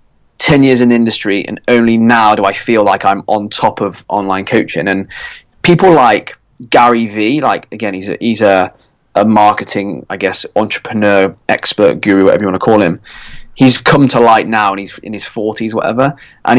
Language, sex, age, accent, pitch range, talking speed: English, male, 20-39, British, 105-125 Hz, 195 wpm